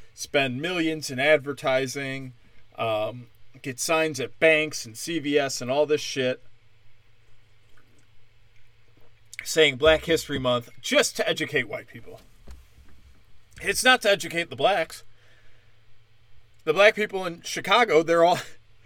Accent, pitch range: American, 110-155 Hz